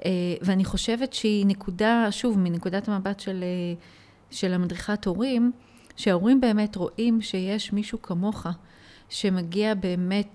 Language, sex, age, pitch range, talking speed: Hebrew, female, 30-49, 180-215 Hz, 115 wpm